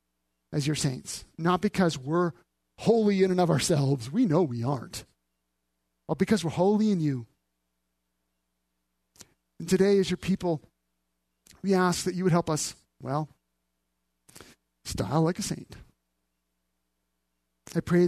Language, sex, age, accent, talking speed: English, male, 40-59, American, 135 wpm